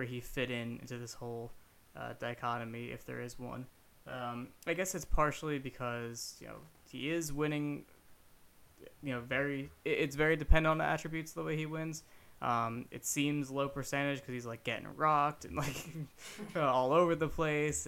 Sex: male